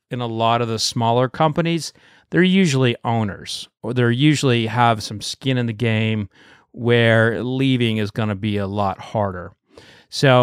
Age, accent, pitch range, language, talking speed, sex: 30-49, American, 110-135 Hz, English, 165 wpm, male